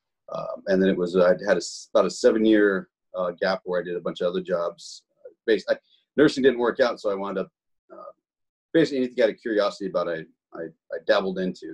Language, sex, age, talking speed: English, male, 30-49, 225 wpm